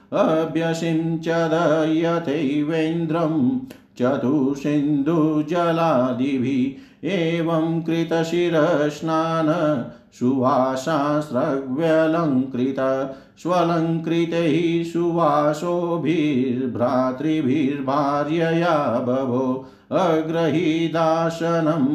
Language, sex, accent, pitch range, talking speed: Hindi, male, native, 135-165 Hz, 35 wpm